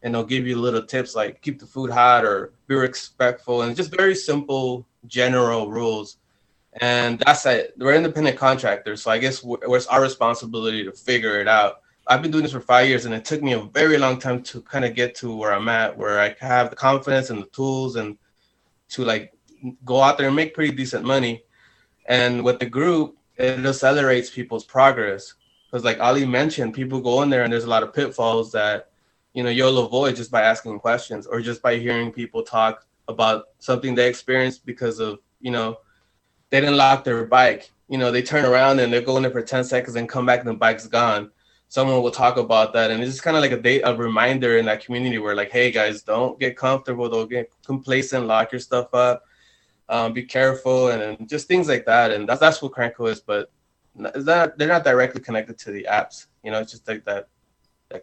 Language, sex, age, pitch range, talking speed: English, male, 20-39, 115-130 Hz, 220 wpm